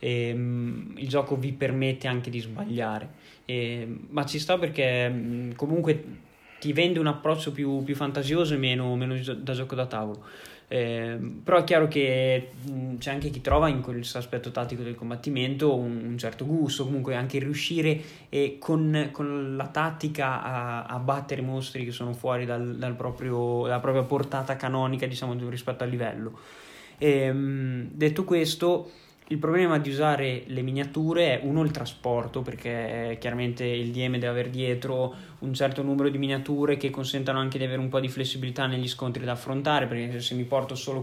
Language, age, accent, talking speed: Italian, 20-39, native, 175 wpm